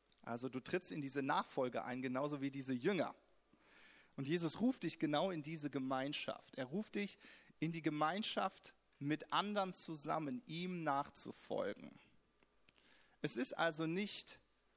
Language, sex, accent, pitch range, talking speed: German, male, German, 140-180 Hz, 140 wpm